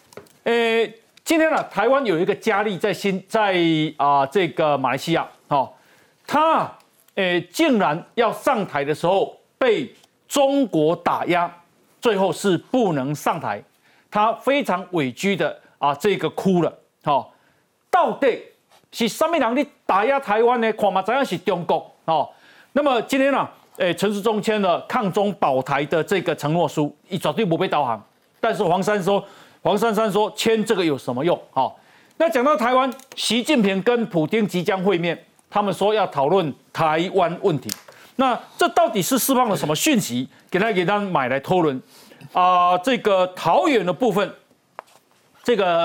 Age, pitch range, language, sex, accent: 40-59, 165-225 Hz, Chinese, male, native